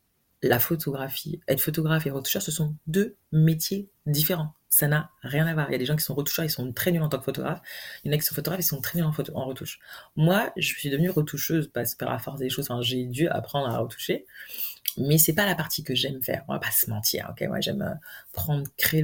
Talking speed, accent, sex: 260 wpm, French, female